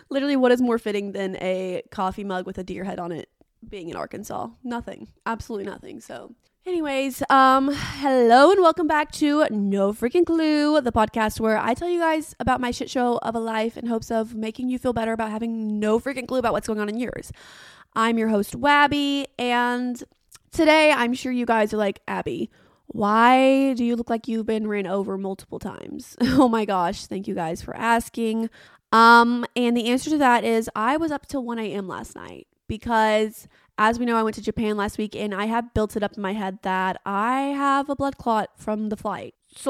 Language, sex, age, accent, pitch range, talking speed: English, female, 20-39, American, 210-255 Hz, 210 wpm